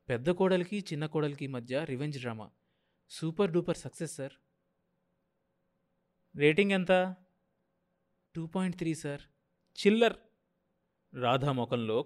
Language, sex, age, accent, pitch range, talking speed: Telugu, male, 20-39, native, 125-175 Hz, 95 wpm